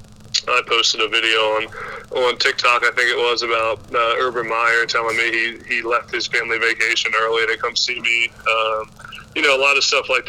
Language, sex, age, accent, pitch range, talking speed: English, male, 20-39, American, 115-140 Hz, 210 wpm